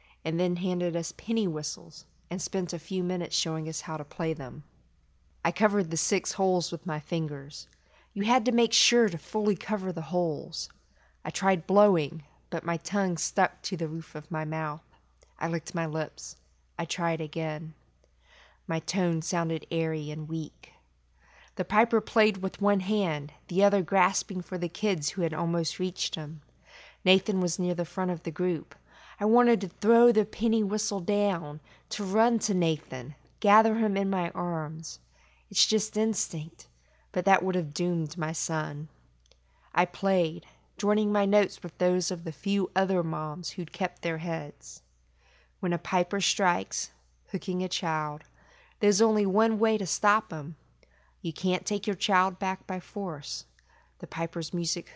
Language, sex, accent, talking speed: English, female, American, 170 wpm